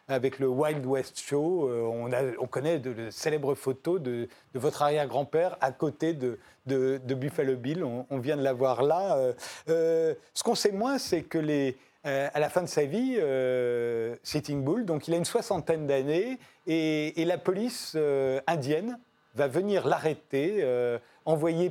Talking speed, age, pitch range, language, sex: 180 wpm, 40-59, 130-180 Hz, French, male